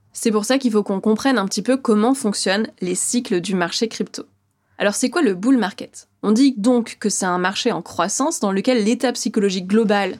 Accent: French